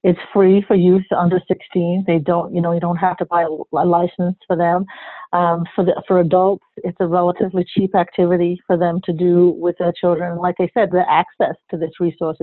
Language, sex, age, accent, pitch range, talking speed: English, female, 50-69, American, 170-195 Hz, 210 wpm